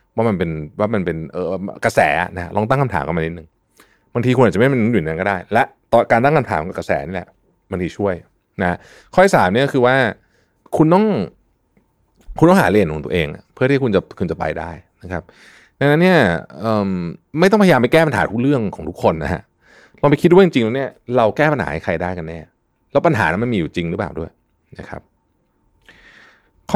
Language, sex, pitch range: Thai, male, 85-125 Hz